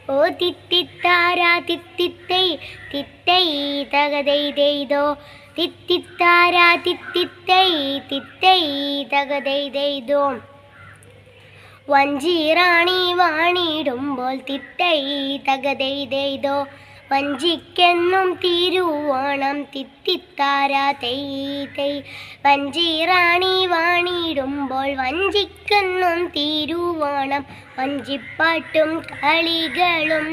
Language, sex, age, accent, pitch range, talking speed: Malayalam, male, 20-39, native, 280-350 Hz, 50 wpm